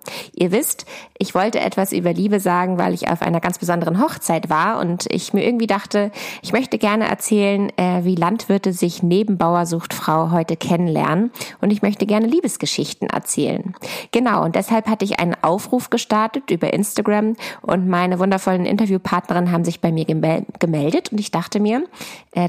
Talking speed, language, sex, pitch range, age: 170 wpm, German, female, 175-215 Hz, 20-39